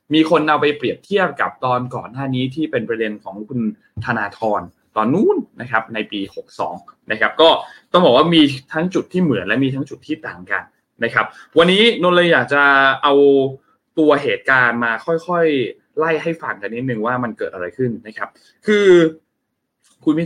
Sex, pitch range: male, 115-165 Hz